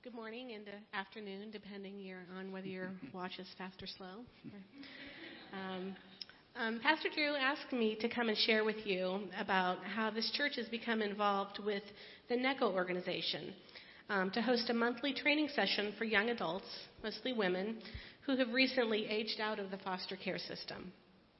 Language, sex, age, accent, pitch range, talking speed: English, female, 40-59, American, 190-230 Hz, 165 wpm